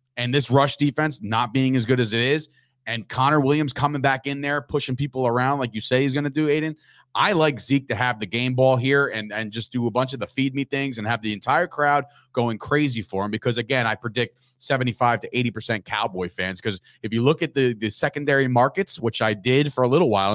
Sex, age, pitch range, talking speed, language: male, 30-49, 115-150 Hz, 240 wpm, English